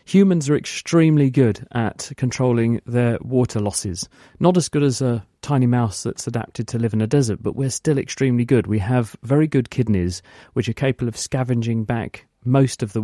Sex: male